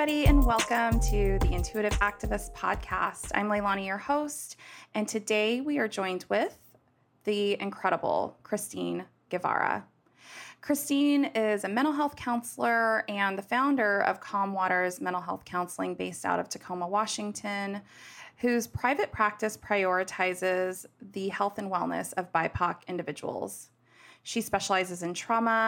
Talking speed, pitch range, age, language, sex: 130 wpm, 180-215 Hz, 20-39, English, female